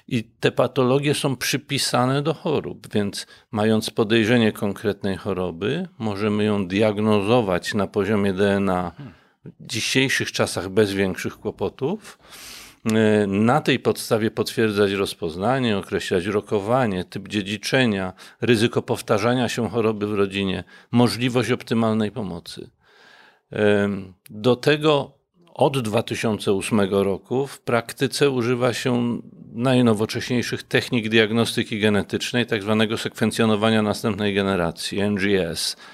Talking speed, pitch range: 100 wpm, 105-130 Hz